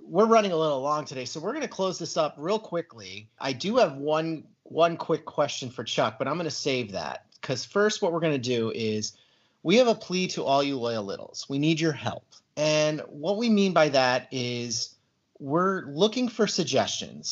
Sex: male